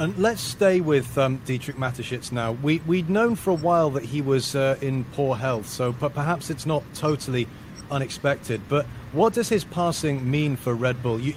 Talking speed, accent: 200 wpm, British